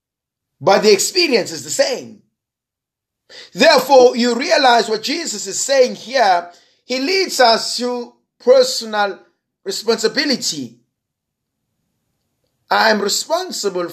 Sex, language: male, English